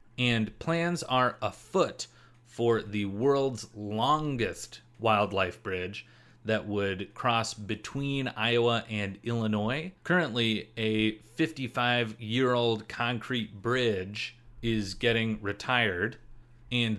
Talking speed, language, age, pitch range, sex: 100 wpm, English, 30-49, 110-125 Hz, male